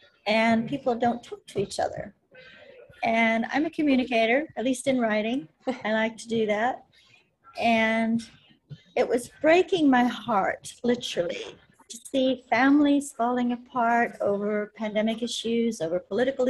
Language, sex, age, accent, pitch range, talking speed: English, female, 40-59, American, 230-295 Hz, 135 wpm